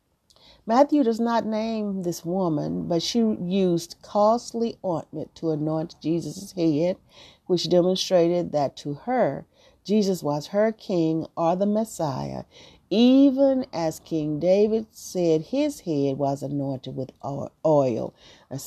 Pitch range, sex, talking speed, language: 160-210 Hz, female, 125 wpm, English